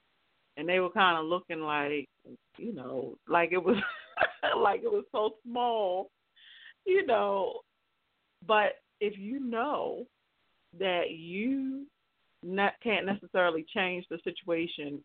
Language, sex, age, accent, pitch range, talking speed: English, female, 40-59, American, 155-190 Hz, 125 wpm